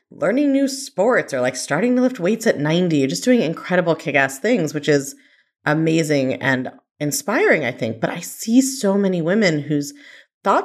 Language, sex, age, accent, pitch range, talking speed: English, female, 30-49, American, 155-255 Hz, 180 wpm